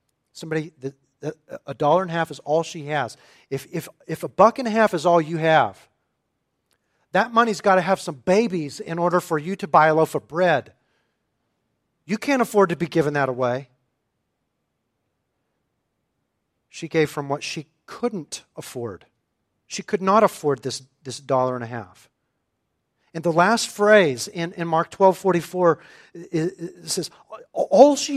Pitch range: 135-190 Hz